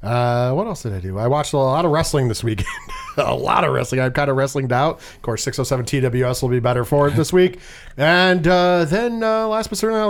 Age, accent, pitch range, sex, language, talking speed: 40-59, American, 130-175 Hz, male, English, 250 wpm